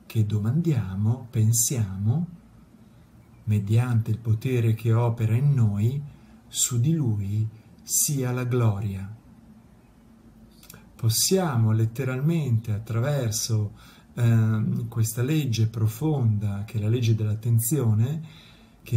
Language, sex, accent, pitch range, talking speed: Italian, male, native, 110-140 Hz, 90 wpm